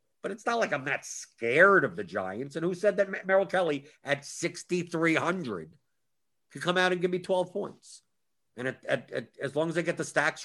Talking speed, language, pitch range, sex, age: 195 wpm, English, 130-175 Hz, male, 50-69